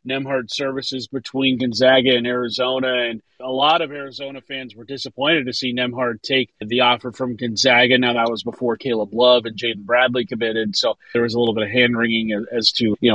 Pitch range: 125-150 Hz